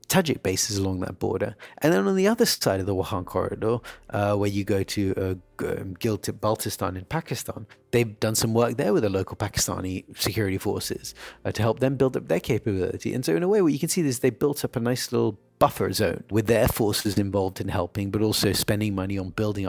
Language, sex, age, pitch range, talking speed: English, male, 30-49, 95-125 Hz, 230 wpm